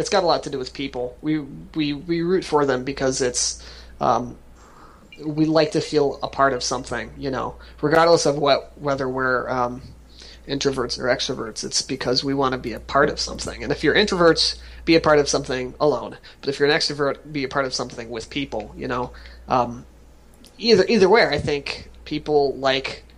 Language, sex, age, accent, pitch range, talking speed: English, male, 30-49, American, 120-145 Hz, 200 wpm